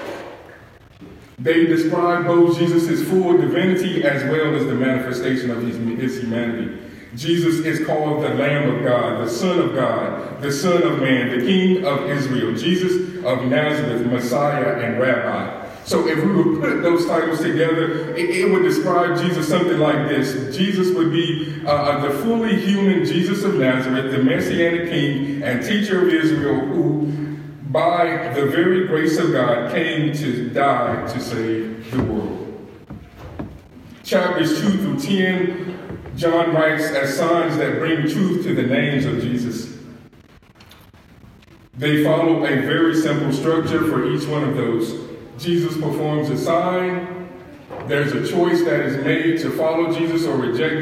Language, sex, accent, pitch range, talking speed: English, male, American, 130-170 Hz, 150 wpm